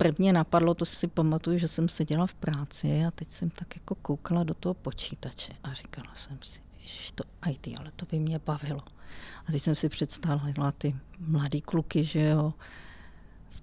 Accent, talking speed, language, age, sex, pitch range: native, 185 wpm, Czech, 40-59, female, 150-195 Hz